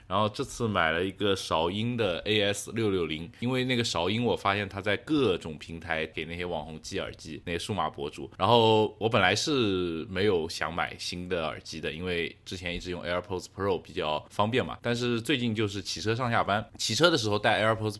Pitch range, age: 90-115 Hz, 20-39